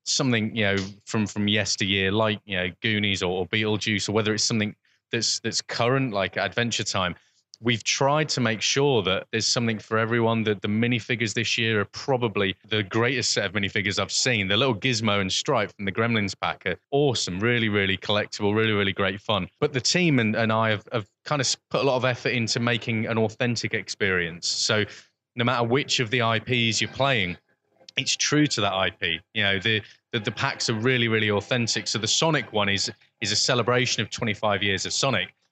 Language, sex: English, male